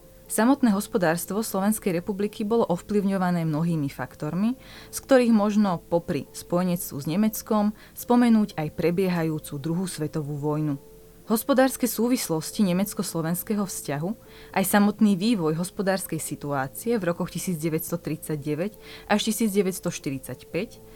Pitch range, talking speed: 155-210 Hz, 100 wpm